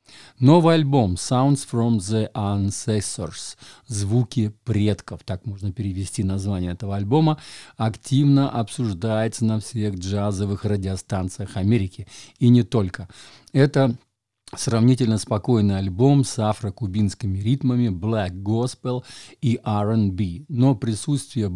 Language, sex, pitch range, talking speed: Russian, male, 100-125 Hz, 105 wpm